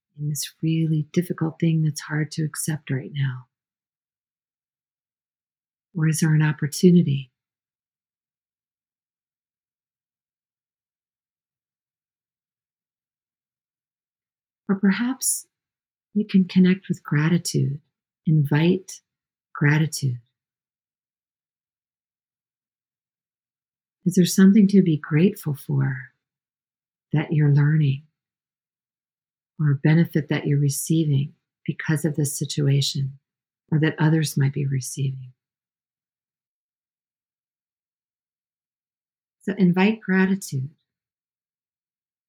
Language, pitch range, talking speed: English, 145-175 Hz, 75 wpm